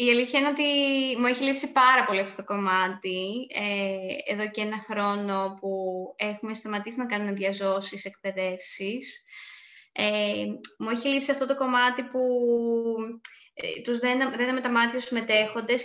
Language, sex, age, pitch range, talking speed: Greek, female, 20-39, 215-275 Hz, 150 wpm